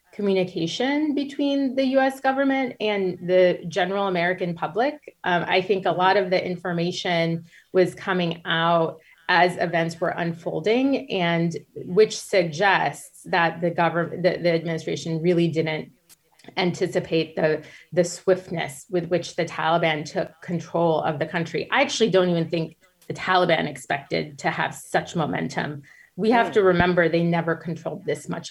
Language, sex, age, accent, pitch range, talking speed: English, female, 30-49, American, 165-200 Hz, 145 wpm